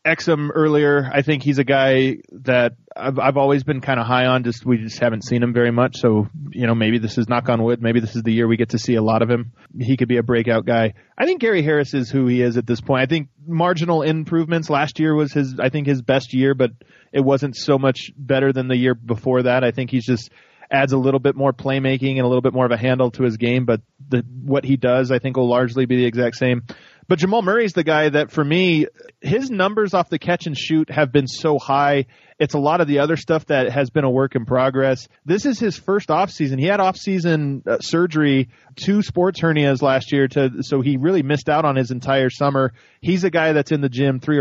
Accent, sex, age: American, male, 20-39